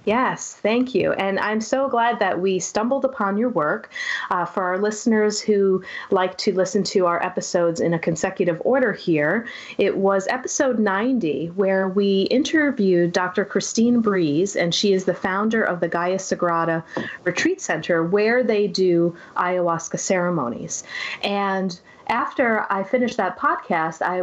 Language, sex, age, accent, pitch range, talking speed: English, female, 30-49, American, 180-225 Hz, 155 wpm